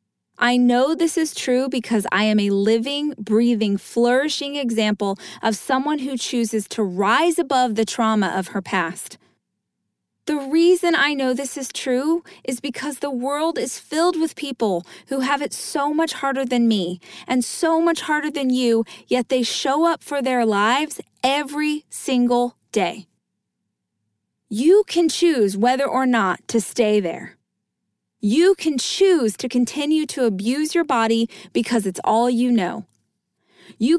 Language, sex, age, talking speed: English, female, 20-39, 155 wpm